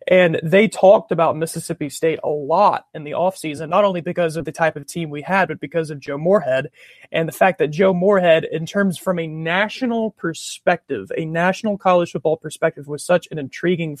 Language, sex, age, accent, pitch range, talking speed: English, male, 30-49, American, 155-185 Hz, 200 wpm